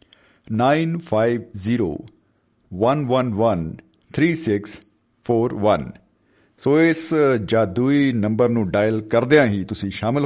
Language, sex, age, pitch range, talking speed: Punjabi, male, 50-69, 105-145 Hz, 75 wpm